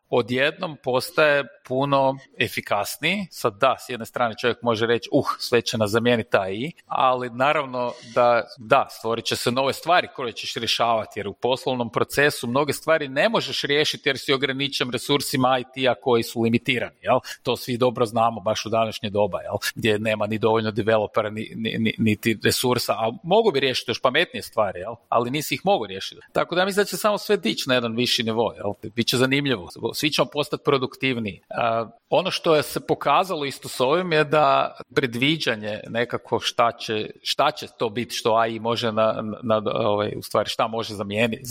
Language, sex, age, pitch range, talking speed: Croatian, male, 40-59, 115-145 Hz, 185 wpm